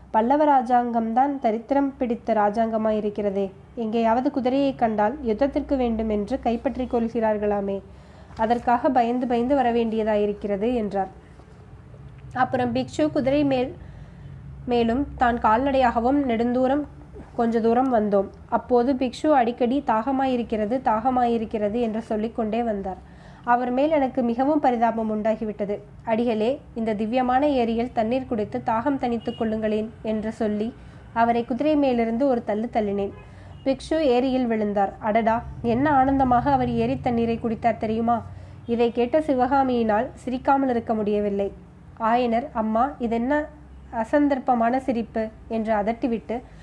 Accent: native